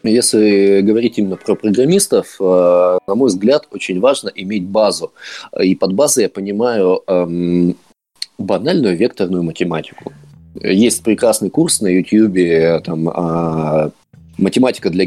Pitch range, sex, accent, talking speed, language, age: 85-110 Hz, male, native, 110 wpm, Russian, 20-39